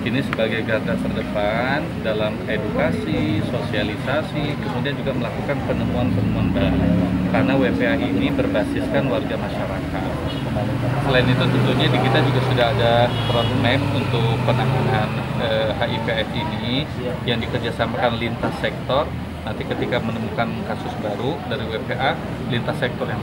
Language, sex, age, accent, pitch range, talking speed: Indonesian, male, 20-39, native, 115-135 Hz, 120 wpm